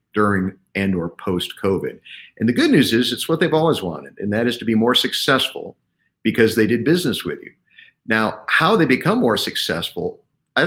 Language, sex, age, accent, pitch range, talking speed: English, male, 50-69, American, 100-145 Hz, 195 wpm